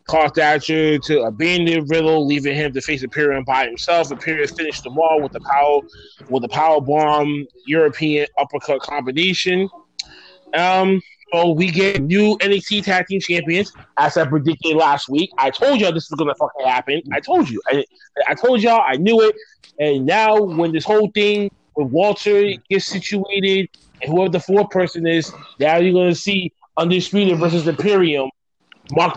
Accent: American